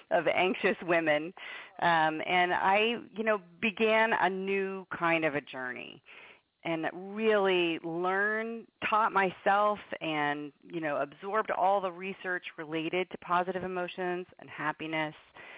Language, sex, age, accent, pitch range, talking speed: English, female, 40-59, American, 155-195 Hz, 125 wpm